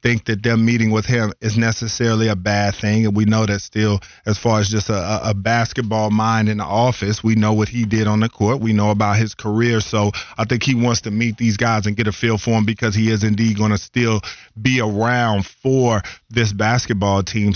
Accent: American